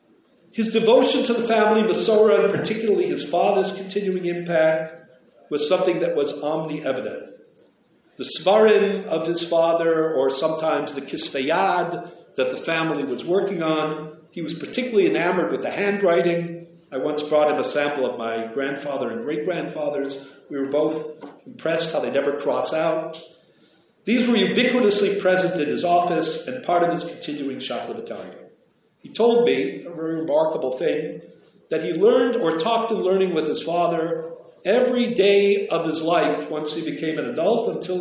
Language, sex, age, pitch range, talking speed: English, male, 50-69, 155-220 Hz, 160 wpm